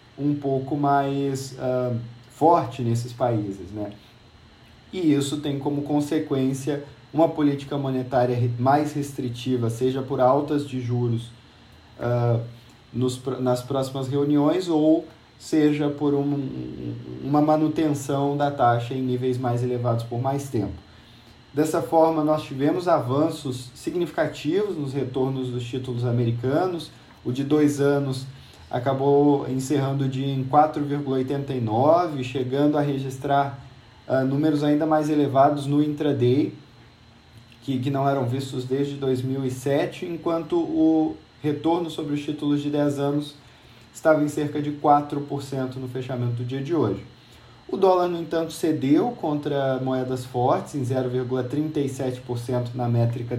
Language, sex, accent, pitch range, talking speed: Portuguese, male, Brazilian, 125-150 Hz, 125 wpm